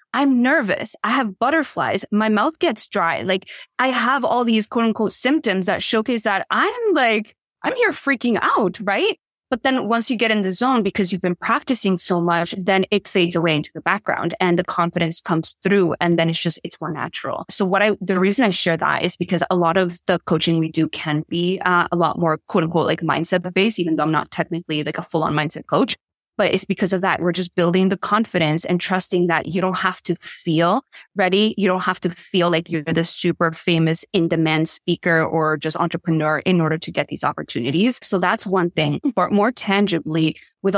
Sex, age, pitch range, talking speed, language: female, 20-39, 170-205 Hz, 215 wpm, English